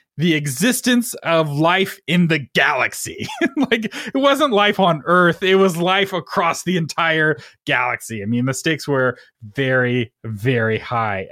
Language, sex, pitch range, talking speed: English, male, 125-170 Hz, 150 wpm